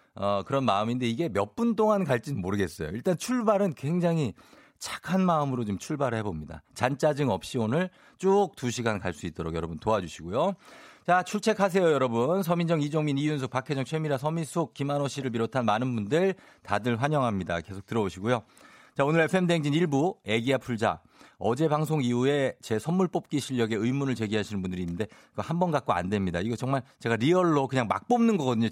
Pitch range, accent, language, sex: 110-160 Hz, native, Korean, male